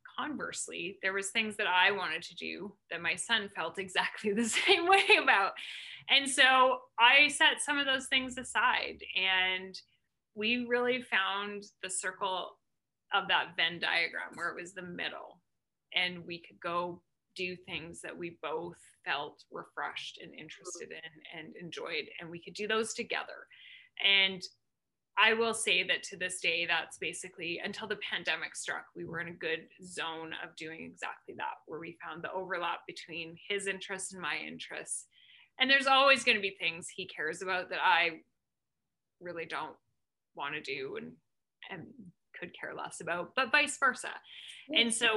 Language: English